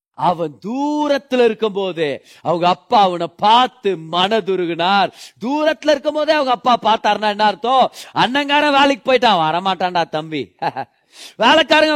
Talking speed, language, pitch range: 115 wpm, Tamil, 175-245 Hz